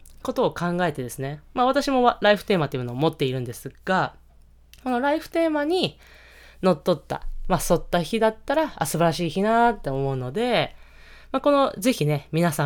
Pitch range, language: 140-210 Hz, Japanese